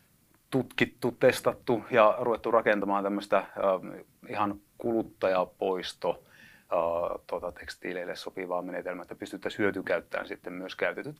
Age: 30-49